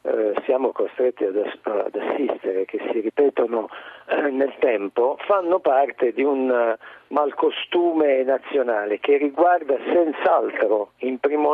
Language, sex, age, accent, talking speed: Italian, male, 50-69, native, 105 wpm